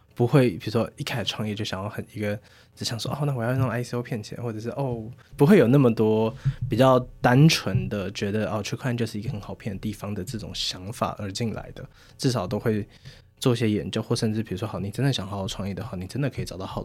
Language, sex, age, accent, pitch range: Chinese, male, 20-39, native, 100-125 Hz